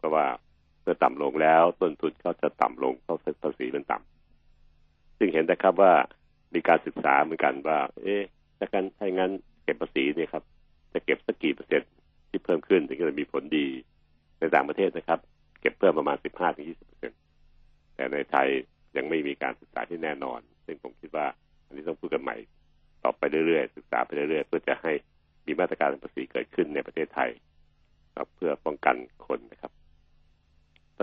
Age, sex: 60-79, male